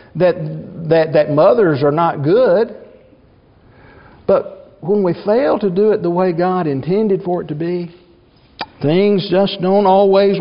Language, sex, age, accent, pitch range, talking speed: English, male, 50-69, American, 160-205 Hz, 150 wpm